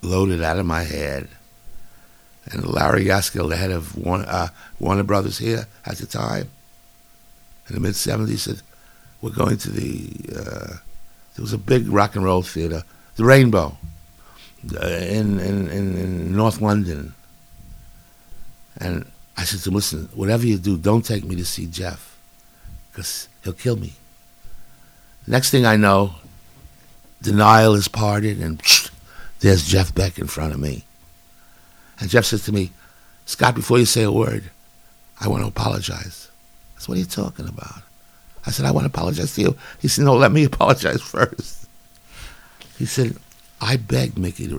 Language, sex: English, male